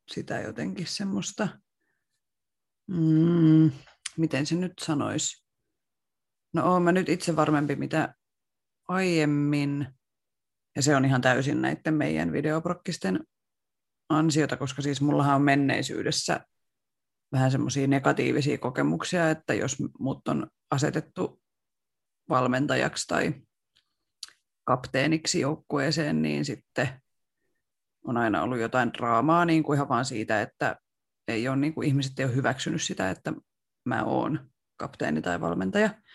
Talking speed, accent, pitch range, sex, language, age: 120 wpm, native, 130-165 Hz, female, Finnish, 30-49